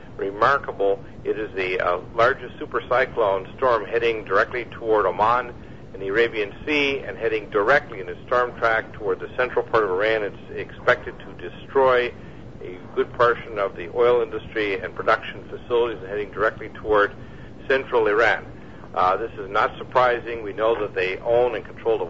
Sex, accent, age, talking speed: male, American, 60-79, 170 wpm